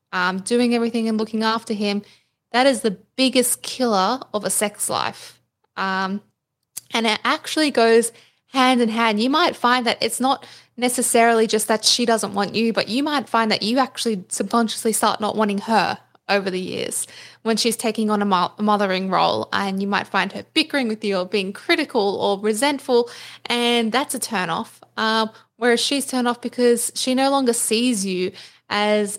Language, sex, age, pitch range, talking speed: English, female, 10-29, 195-230 Hz, 185 wpm